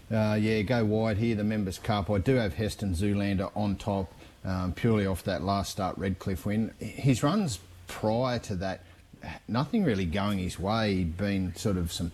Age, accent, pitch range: 30-49, Australian, 95-105 Hz